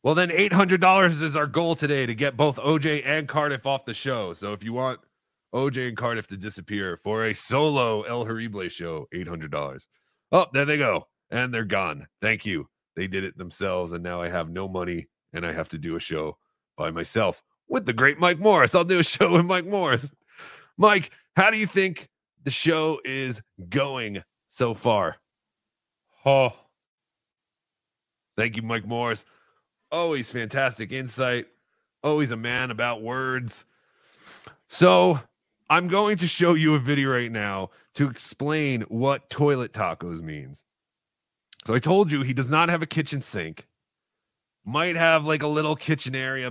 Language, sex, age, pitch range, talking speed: English, male, 30-49, 110-150 Hz, 170 wpm